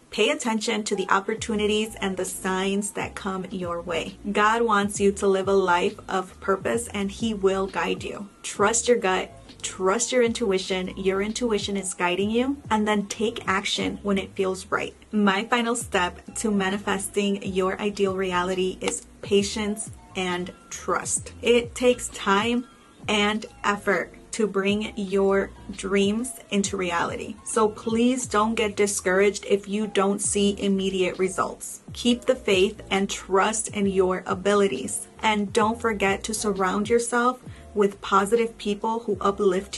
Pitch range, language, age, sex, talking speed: 195-220 Hz, English, 30-49, female, 150 wpm